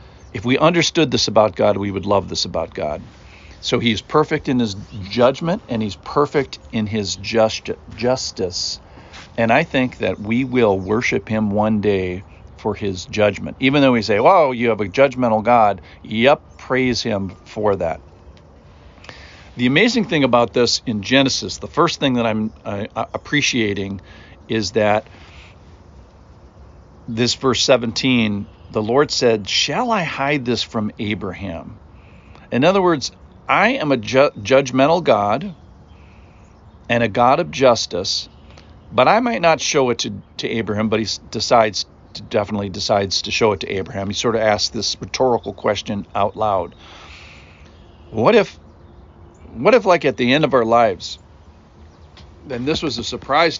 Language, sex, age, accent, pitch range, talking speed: English, male, 50-69, American, 95-125 Hz, 160 wpm